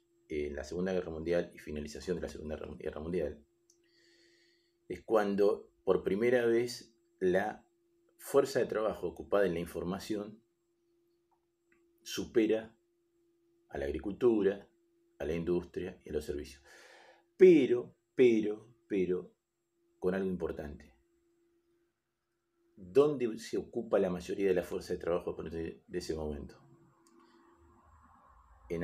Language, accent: Spanish, Argentinian